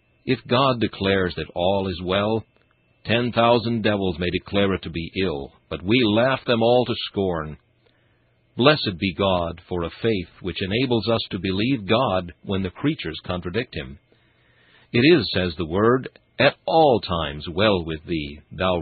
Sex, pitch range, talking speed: male, 85-120 Hz, 165 wpm